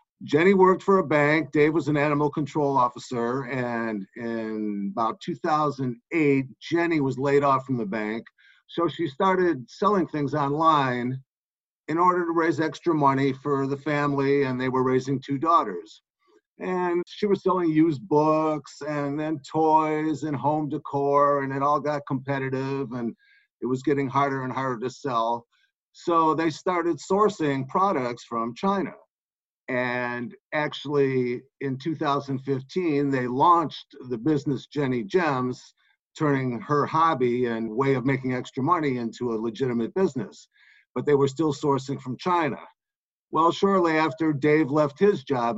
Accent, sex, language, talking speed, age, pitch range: American, male, English, 150 wpm, 50-69, 130-165 Hz